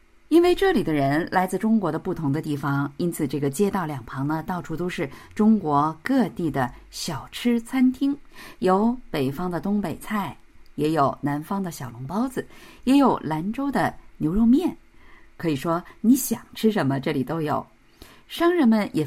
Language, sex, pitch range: Chinese, female, 150-220 Hz